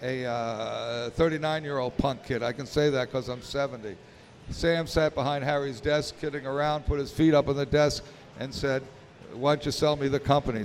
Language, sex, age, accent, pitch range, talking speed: English, male, 60-79, American, 130-150 Hz, 195 wpm